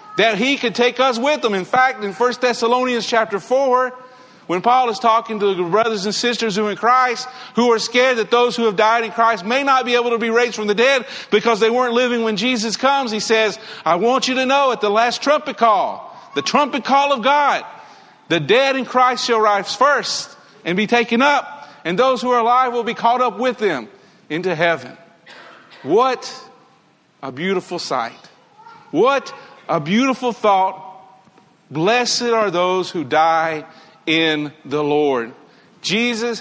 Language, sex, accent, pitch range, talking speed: English, male, American, 180-250 Hz, 190 wpm